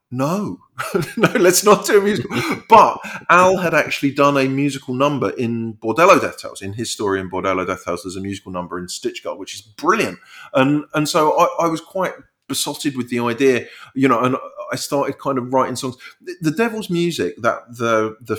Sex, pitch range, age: male, 95-125 Hz, 30-49